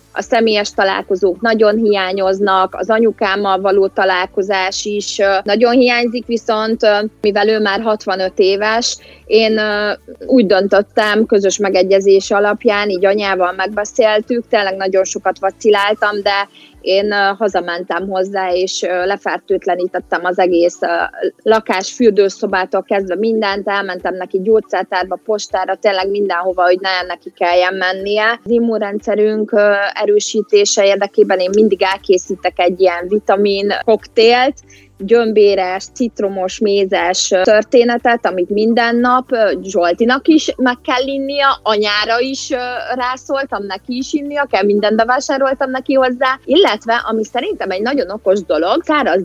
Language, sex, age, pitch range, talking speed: Hungarian, female, 20-39, 190-225 Hz, 115 wpm